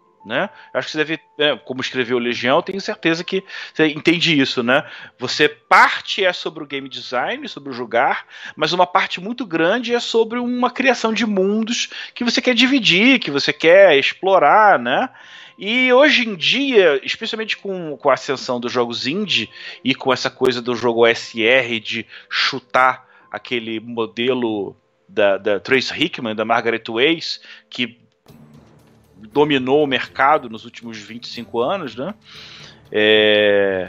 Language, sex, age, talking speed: Portuguese, male, 30-49, 150 wpm